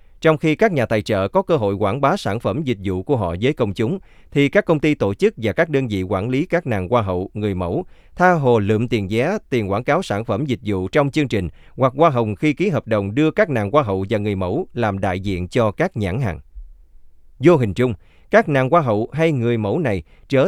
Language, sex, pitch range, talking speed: Vietnamese, male, 95-145 Hz, 255 wpm